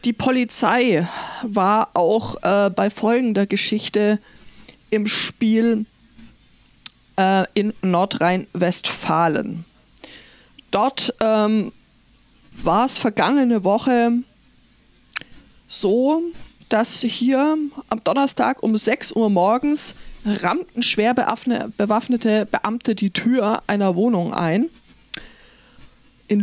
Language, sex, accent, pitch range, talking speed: German, female, German, 195-235 Hz, 85 wpm